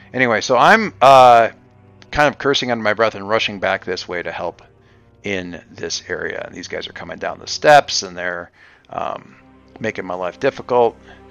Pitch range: 95-125 Hz